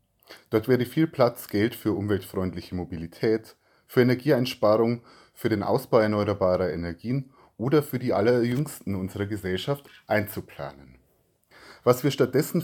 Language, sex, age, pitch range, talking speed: German, male, 30-49, 105-130 Hz, 120 wpm